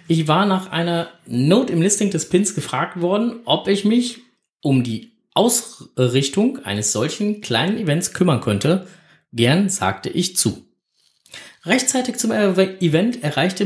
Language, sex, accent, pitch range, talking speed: German, male, German, 120-190 Hz, 135 wpm